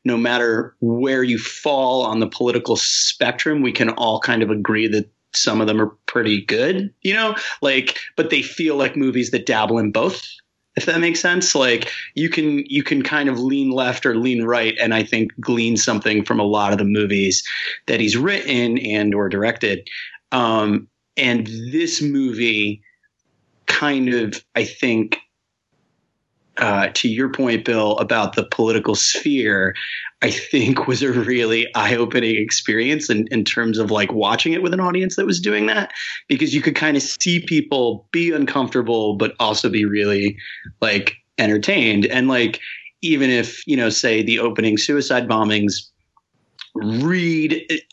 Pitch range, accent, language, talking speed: 110-145 Hz, American, English, 165 wpm